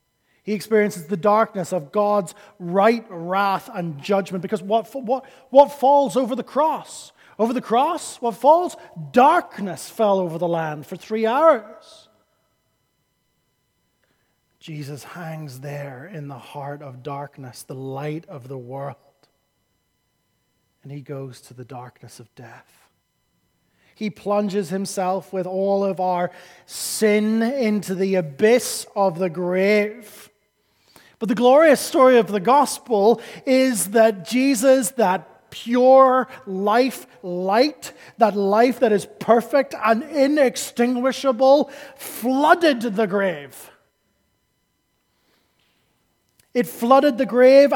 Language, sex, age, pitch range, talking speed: English, male, 30-49, 185-270 Hz, 120 wpm